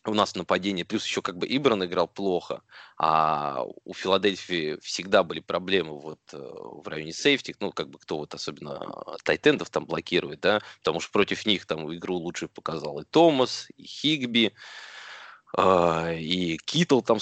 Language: Russian